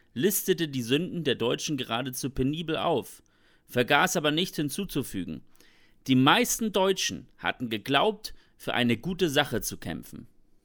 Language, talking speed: German, 130 wpm